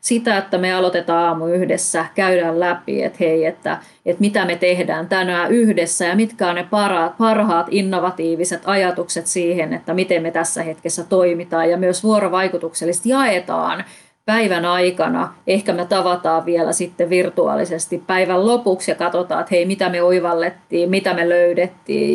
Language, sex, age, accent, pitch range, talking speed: Finnish, female, 30-49, native, 170-190 Hz, 150 wpm